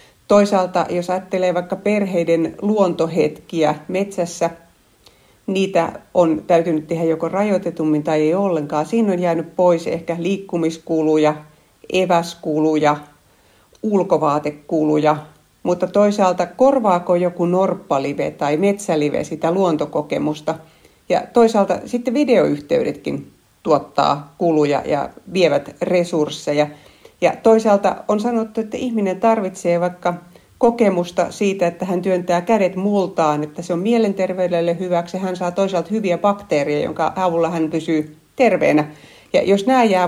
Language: Finnish